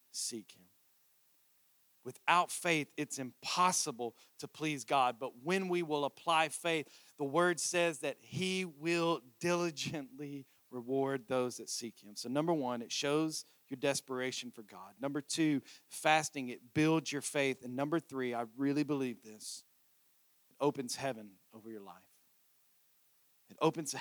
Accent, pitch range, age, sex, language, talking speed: American, 130-170 Hz, 40-59, male, English, 145 wpm